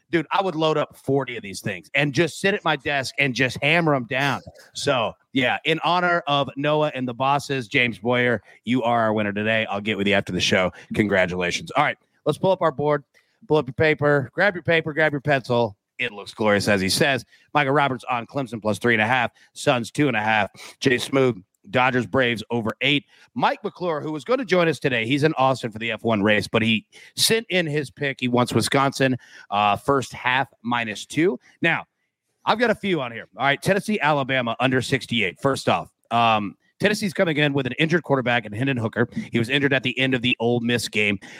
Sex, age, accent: male, 30-49, American